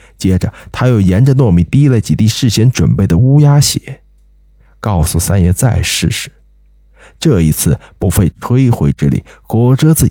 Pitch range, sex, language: 85-135 Hz, male, Chinese